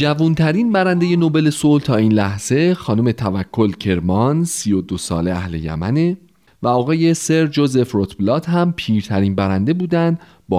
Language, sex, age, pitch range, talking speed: Persian, male, 30-49, 95-155 Hz, 145 wpm